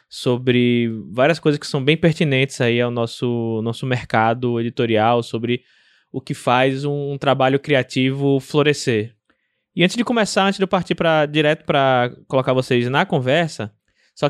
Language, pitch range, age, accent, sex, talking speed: Portuguese, 130-155 Hz, 20-39, Brazilian, male, 160 wpm